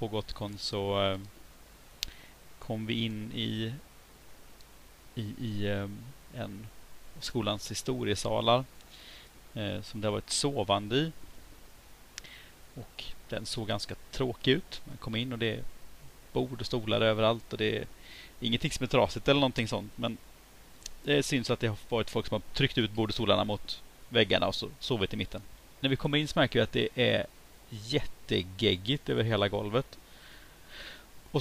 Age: 30-49